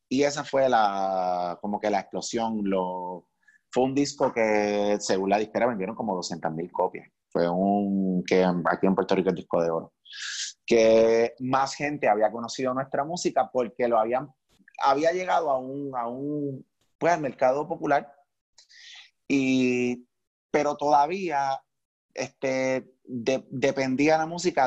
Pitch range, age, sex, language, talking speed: 105-140 Hz, 30-49, male, Spanish, 140 wpm